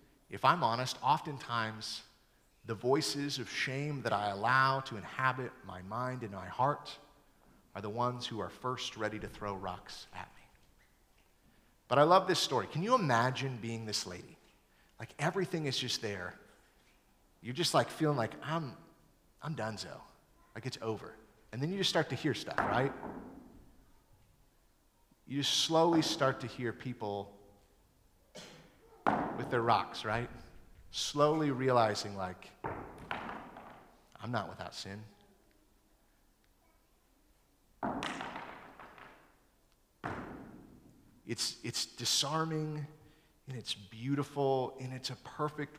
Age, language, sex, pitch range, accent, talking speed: 30-49, English, male, 110-150 Hz, American, 120 wpm